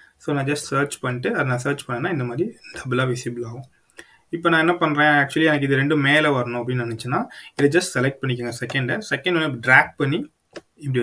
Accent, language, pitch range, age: native, Tamil, 120-155 Hz, 20-39